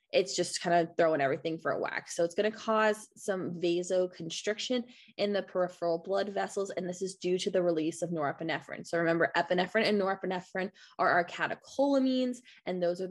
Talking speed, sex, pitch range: 190 wpm, female, 170-190 Hz